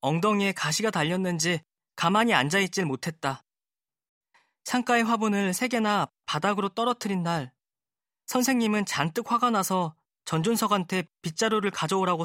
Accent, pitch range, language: native, 180-240 Hz, Korean